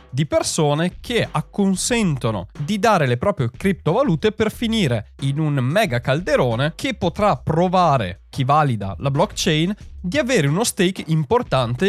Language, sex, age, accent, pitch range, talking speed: Italian, male, 30-49, native, 125-180 Hz, 135 wpm